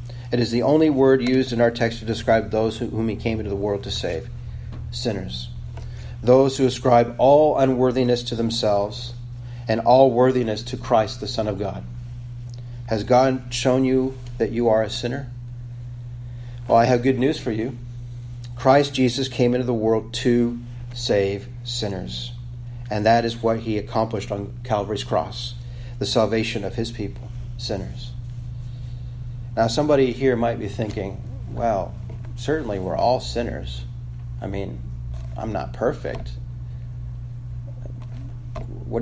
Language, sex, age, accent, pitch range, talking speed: English, male, 40-59, American, 110-120 Hz, 145 wpm